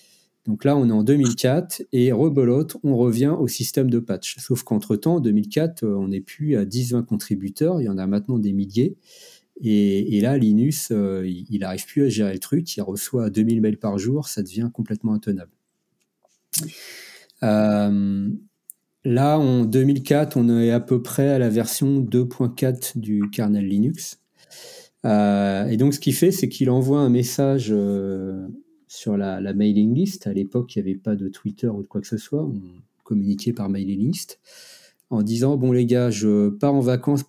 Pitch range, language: 105-140 Hz, French